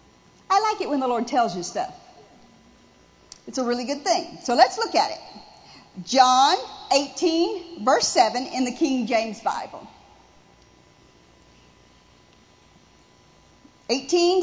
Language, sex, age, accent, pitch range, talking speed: English, female, 50-69, American, 275-400 Hz, 120 wpm